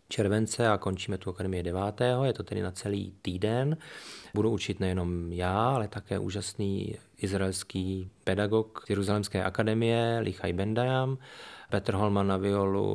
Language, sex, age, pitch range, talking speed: Czech, male, 30-49, 95-120 Hz, 135 wpm